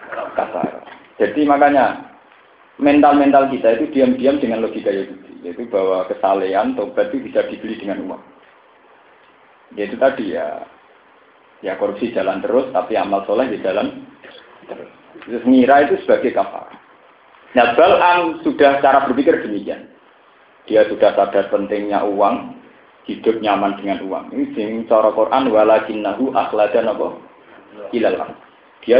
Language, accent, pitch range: Indonesian, native, 110-165 Hz